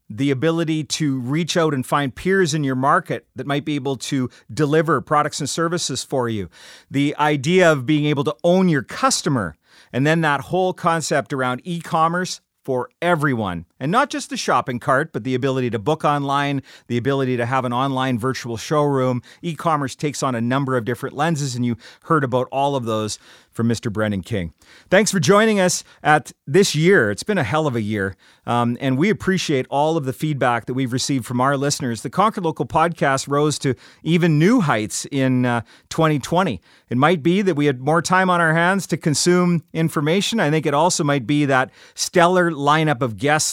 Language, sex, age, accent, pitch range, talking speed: English, male, 40-59, American, 130-170 Hz, 200 wpm